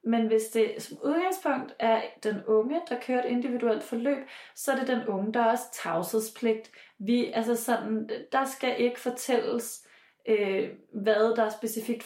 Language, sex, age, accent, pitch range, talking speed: Danish, female, 30-49, native, 220-255 Hz, 150 wpm